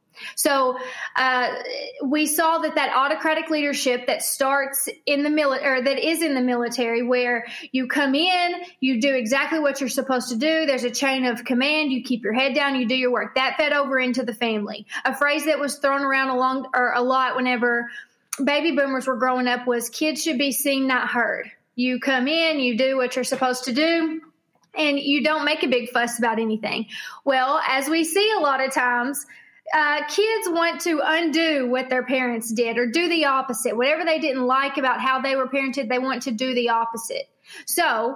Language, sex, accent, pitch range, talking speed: English, female, American, 250-305 Hz, 205 wpm